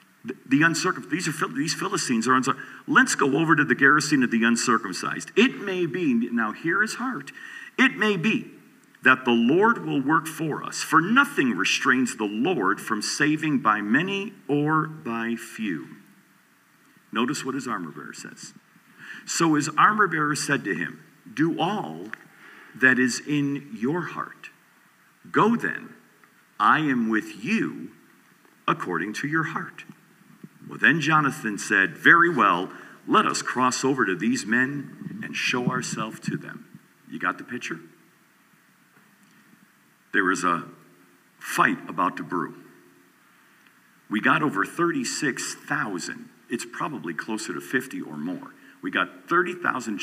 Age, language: 50-69, English